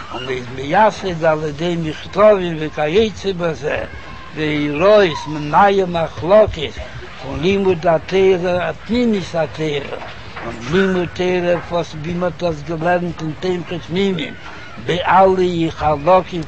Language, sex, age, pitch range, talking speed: Hebrew, male, 60-79, 150-185 Hz, 85 wpm